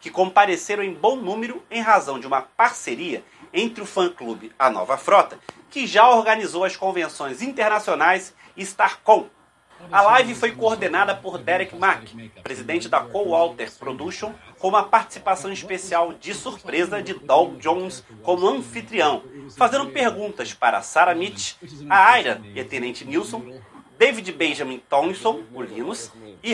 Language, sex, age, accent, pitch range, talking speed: Portuguese, male, 30-49, Brazilian, 170-225 Hz, 140 wpm